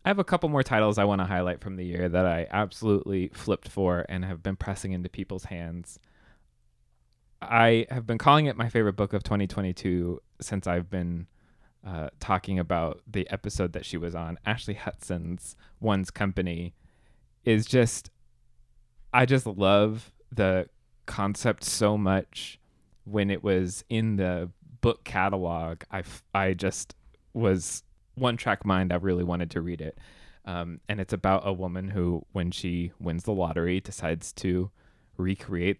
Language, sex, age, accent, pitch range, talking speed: English, male, 20-39, American, 90-110 Hz, 160 wpm